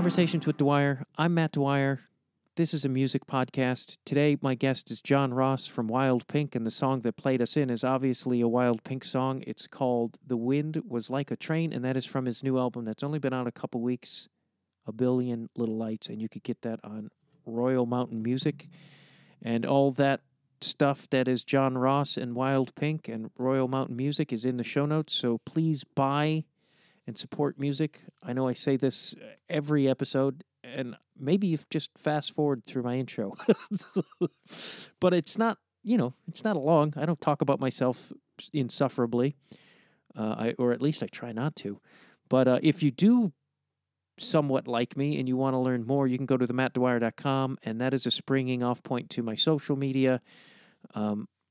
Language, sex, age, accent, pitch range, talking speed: English, male, 40-59, American, 125-150 Hz, 190 wpm